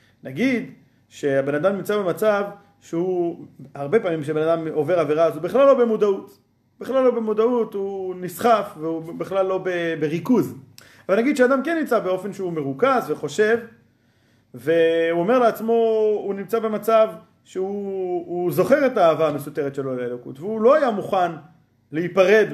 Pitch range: 160-225 Hz